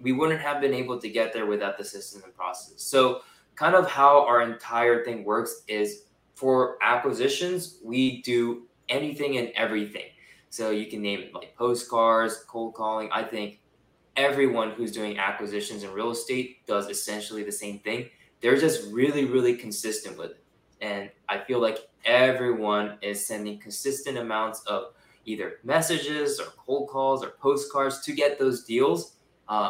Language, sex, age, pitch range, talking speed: English, male, 20-39, 110-140 Hz, 165 wpm